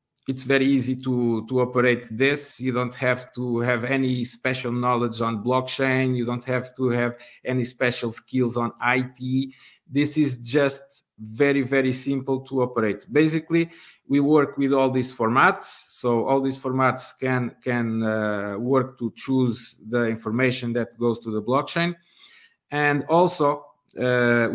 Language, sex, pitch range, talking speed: English, male, 115-135 Hz, 150 wpm